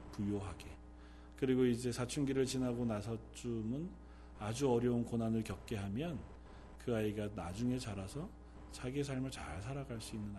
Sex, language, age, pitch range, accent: male, Korean, 40-59, 100-155 Hz, native